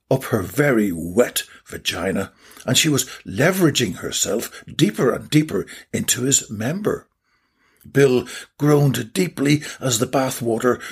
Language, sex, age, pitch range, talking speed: English, male, 60-79, 120-175 Hz, 120 wpm